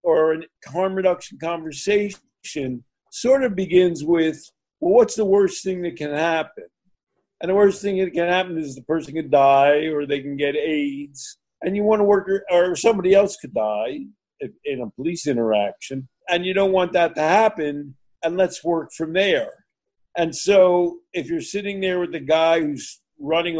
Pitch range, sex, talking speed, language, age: 150-190 Hz, male, 185 wpm, English, 50-69